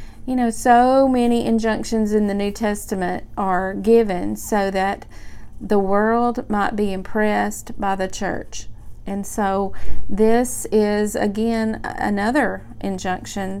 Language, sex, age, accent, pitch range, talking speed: English, female, 40-59, American, 185-215 Hz, 125 wpm